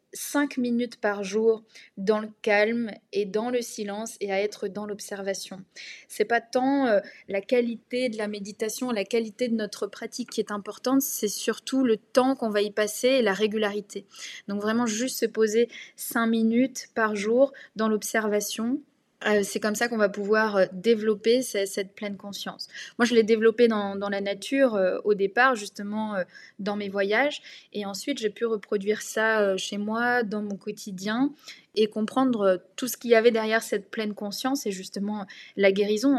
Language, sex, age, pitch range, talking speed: French, female, 20-39, 205-240 Hz, 185 wpm